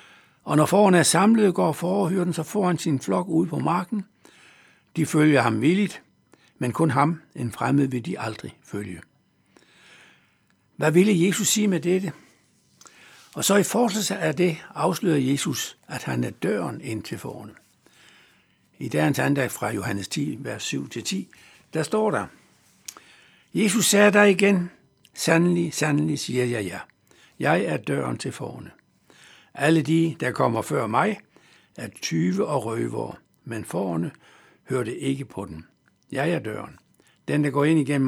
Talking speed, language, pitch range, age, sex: 160 wpm, Danish, 135-180 Hz, 60-79, male